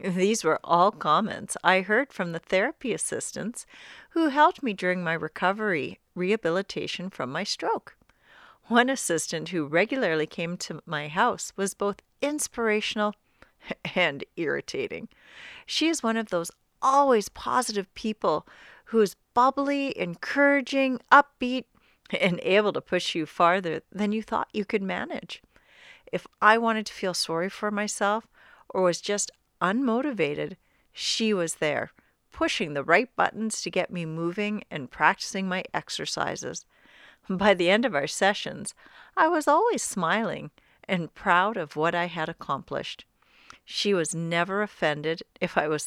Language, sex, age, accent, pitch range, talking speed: English, female, 40-59, American, 175-245 Hz, 145 wpm